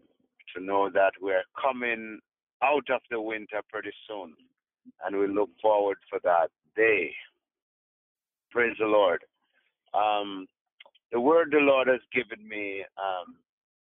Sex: male